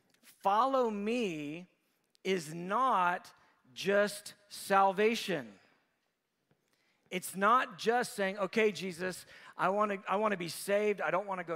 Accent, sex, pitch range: American, male, 195-240 Hz